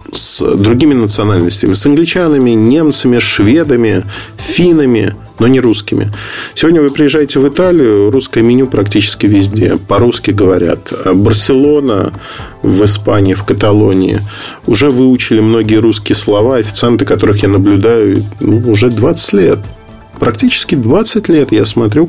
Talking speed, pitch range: 120 wpm, 100-125 Hz